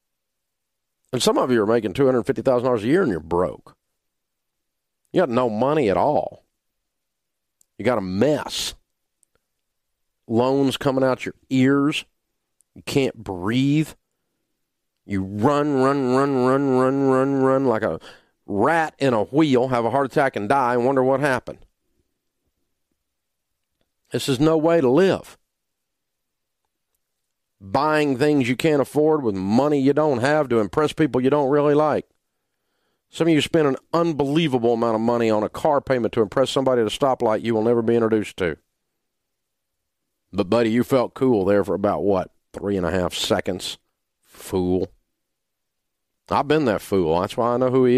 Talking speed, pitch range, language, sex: 160 wpm, 110-140 Hz, English, male